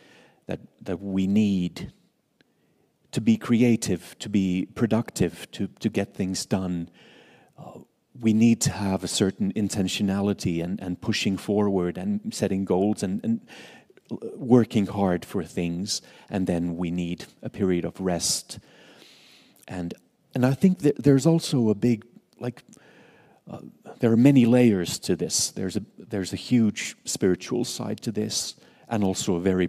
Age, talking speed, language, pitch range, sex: 40-59, 150 wpm, Finnish, 95-115 Hz, male